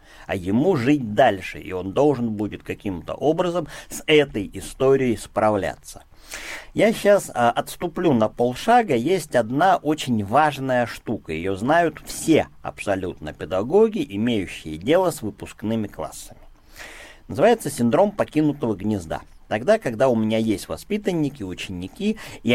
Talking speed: 120 wpm